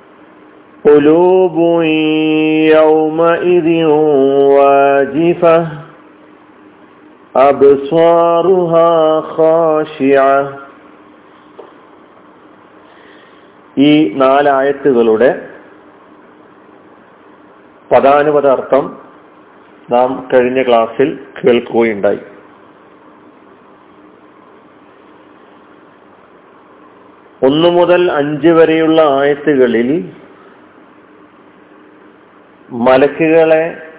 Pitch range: 140-165 Hz